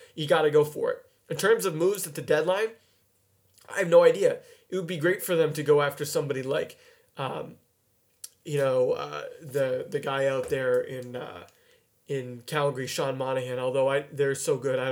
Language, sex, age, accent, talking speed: English, male, 30-49, American, 195 wpm